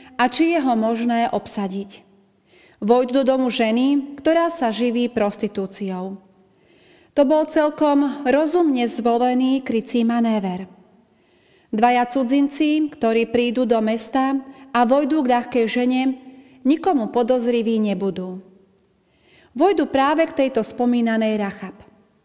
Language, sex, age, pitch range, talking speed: Slovak, female, 40-59, 220-275 Hz, 110 wpm